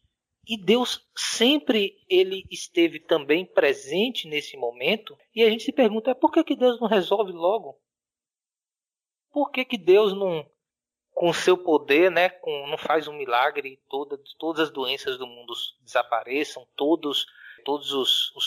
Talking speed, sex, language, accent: 160 wpm, male, Portuguese, Brazilian